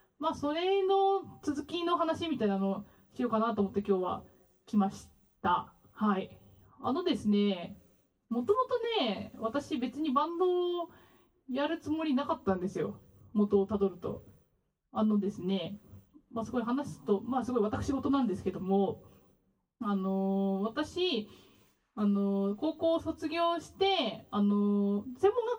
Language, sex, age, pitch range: Japanese, female, 20-39, 200-285 Hz